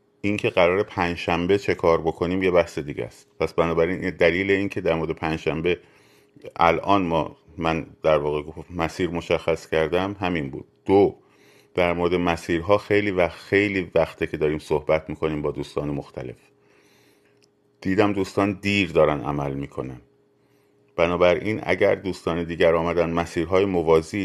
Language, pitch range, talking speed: Persian, 80-100 Hz, 145 wpm